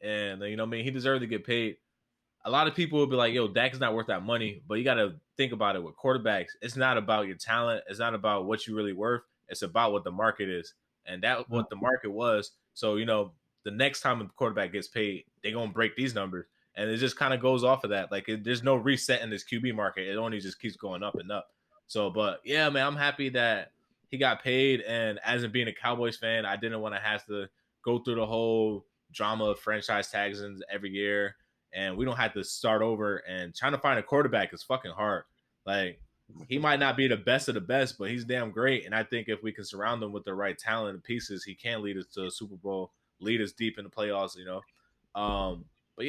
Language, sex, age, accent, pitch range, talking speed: English, male, 20-39, American, 100-125 Hz, 250 wpm